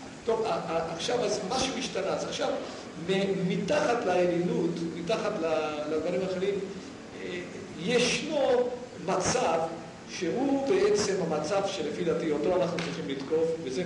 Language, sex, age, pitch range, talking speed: Hebrew, male, 50-69, 135-190 Hz, 100 wpm